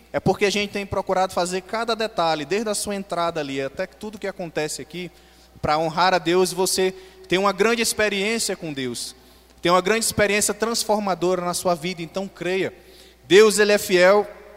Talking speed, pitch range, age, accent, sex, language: 185 wpm, 165-210 Hz, 20-39, Brazilian, male, Portuguese